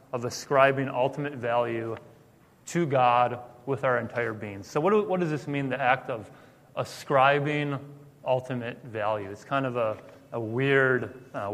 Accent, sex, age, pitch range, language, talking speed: American, male, 30-49, 125-155 Hz, English, 150 wpm